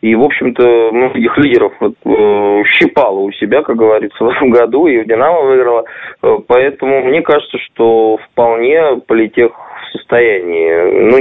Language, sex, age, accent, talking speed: Russian, male, 20-39, native, 155 wpm